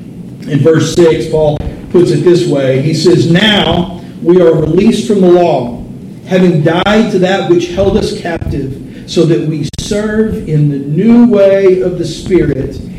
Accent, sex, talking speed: American, male, 165 wpm